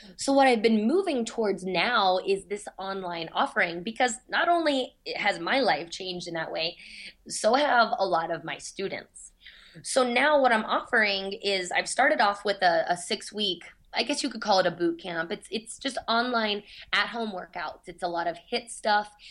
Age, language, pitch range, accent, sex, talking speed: 20-39, English, 180-225 Hz, American, female, 195 wpm